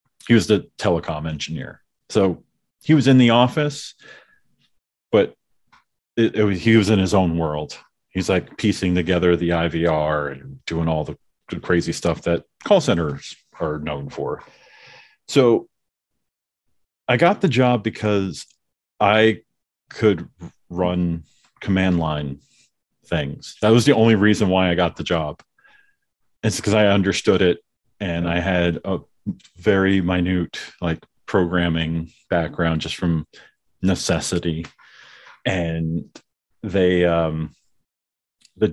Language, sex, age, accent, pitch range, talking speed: English, male, 40-59, American, 85-110 Hz, 120 wpm